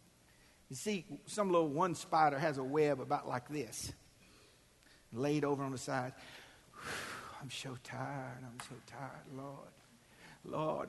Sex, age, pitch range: male, 50-69, 135-180 Hz